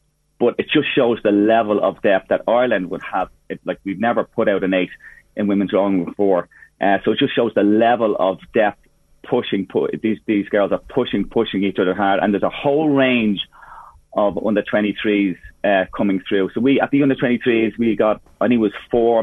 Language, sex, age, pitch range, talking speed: English, male, 30-49, 100-120 Hz, 205 wpm